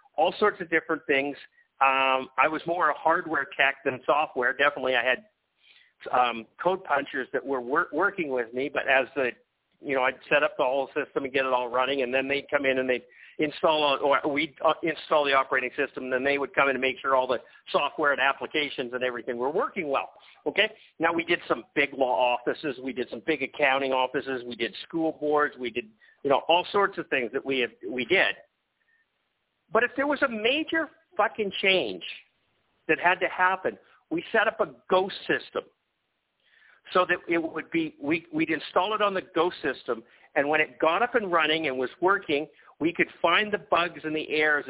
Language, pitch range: English, 135-205 Hz